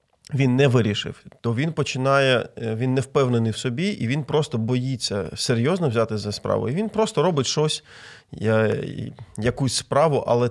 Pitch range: 110-135 Hz